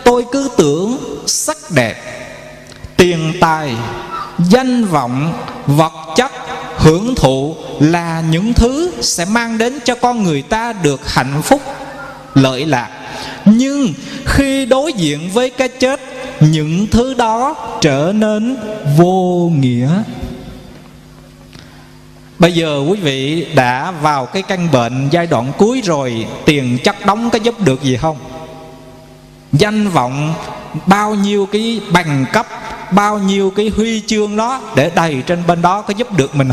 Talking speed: 140 wpm